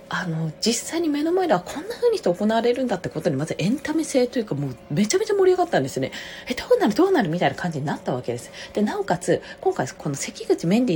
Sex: female